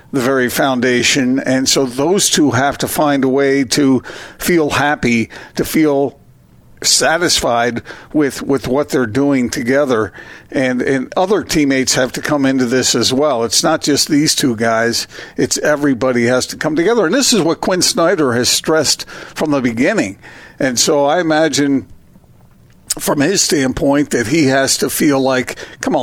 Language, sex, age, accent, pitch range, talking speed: English, male, 50-69, American, 130-155 Hz, 165 wpm